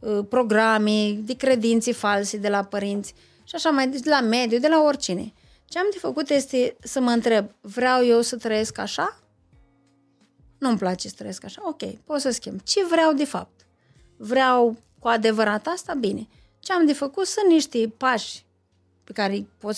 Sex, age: female, 20-39